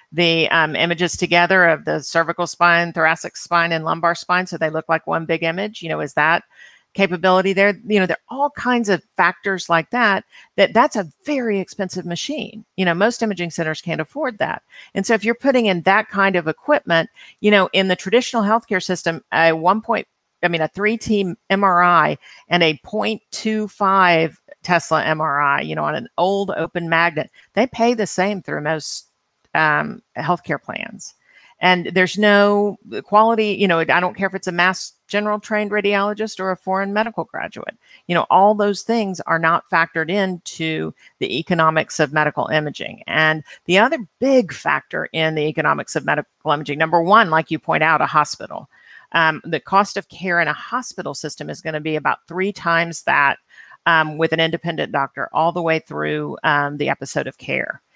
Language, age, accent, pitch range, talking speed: English, 50-69, American, 165-205 Hz, 190 wpm